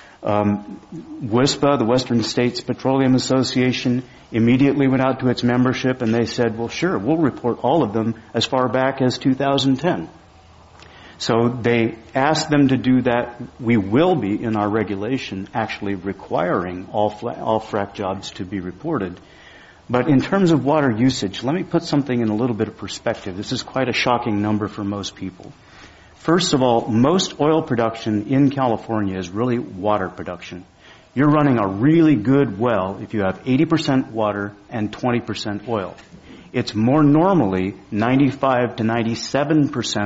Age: 40-59